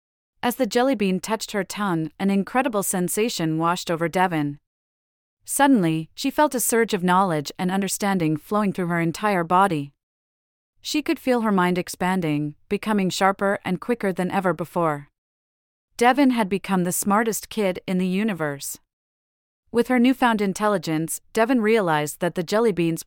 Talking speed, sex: 150 wpm, female